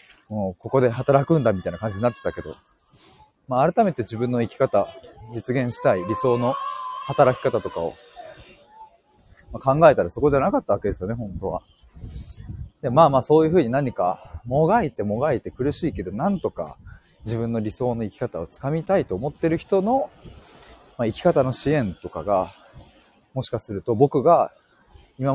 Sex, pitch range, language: male, 115-160 Hz, Japanese